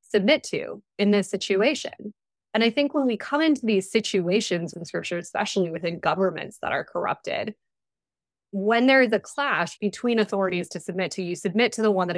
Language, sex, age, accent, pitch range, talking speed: English, female, 20-39, American, 175-215 Hz, 185 wpm